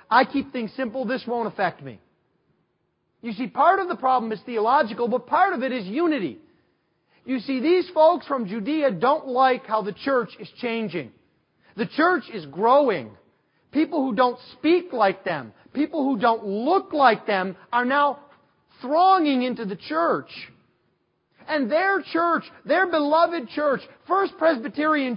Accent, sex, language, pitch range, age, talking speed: American, male, English, 210-310 Hz, 40-59, 155 wpm